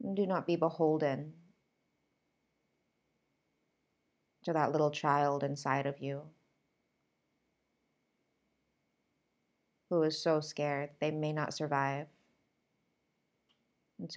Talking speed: 85 wpm